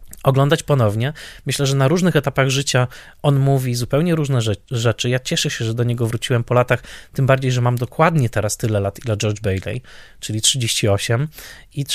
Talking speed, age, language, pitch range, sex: 180 wpm, 20-39, Polish, 115-140 Hz, male